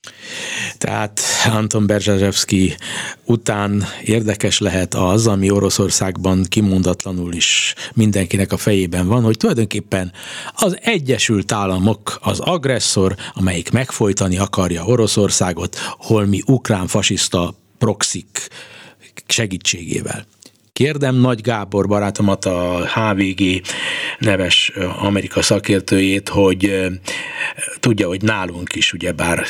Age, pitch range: 50-69, 95-115 Hz